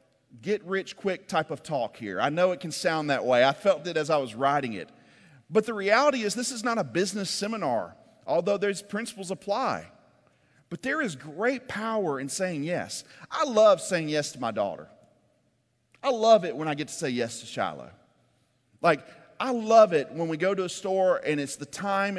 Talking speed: 200 wpm